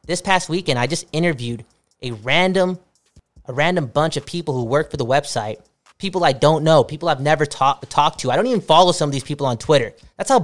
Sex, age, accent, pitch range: male, 20-39, American, 140-180 Hz